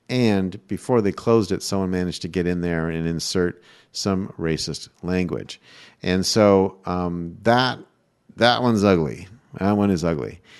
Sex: male